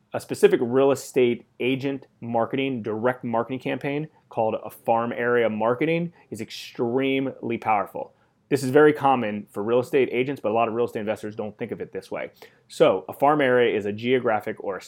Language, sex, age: English, male, 30-49